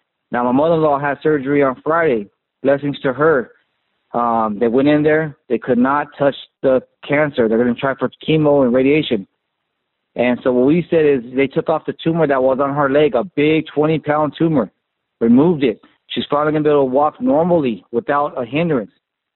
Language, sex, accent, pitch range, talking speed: English, male, American, 130-155 Hz, 195 wpm